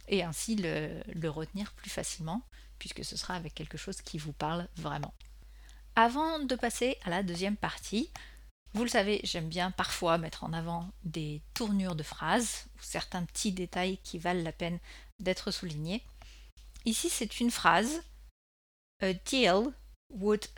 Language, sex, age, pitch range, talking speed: French, female, 40-59, 165-225 Hz, 155 wpm